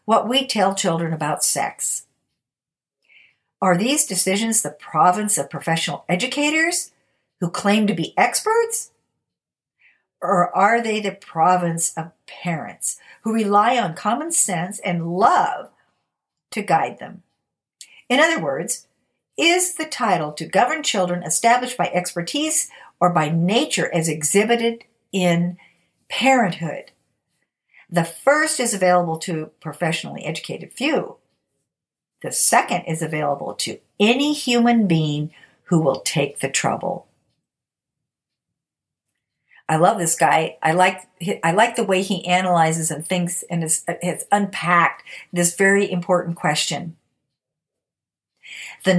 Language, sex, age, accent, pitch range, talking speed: English, female, 60-79, American, 170-225 Hz, 120 wpm